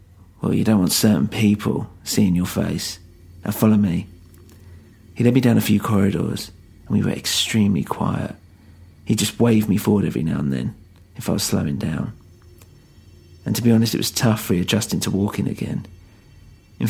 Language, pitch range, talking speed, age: English, 90-110 Hz, 180 wpm, 40-59